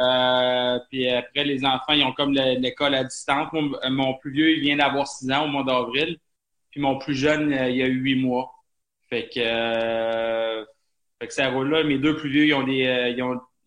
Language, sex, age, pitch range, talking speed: French, male, 20-39, 120-135 Hz, 210 wpm